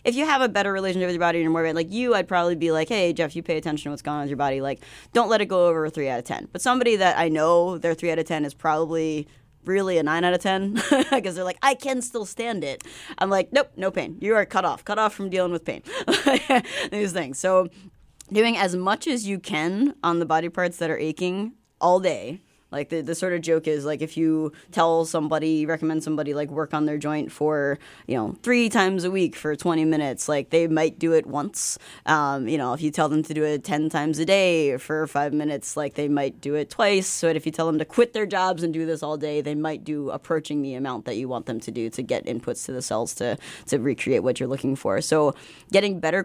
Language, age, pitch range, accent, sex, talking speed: English, 20-39, 150-190 Hz, American, female, 260 wpm